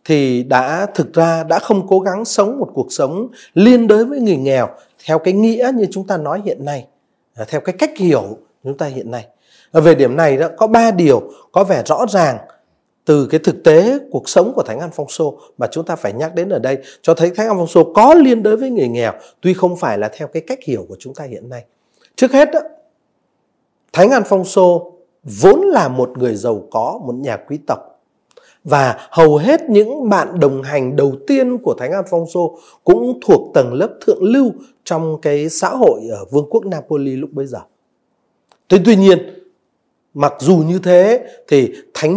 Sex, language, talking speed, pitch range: male, Vietnamese, 205 wpm, 145-220 Hz